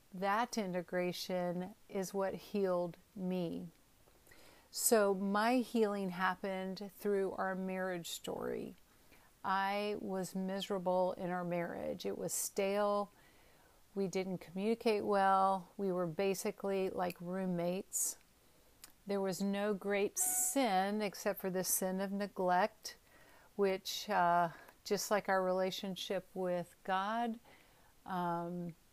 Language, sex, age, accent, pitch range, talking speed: English, female, 50-69, American, 180-205 Hz, 110 wpm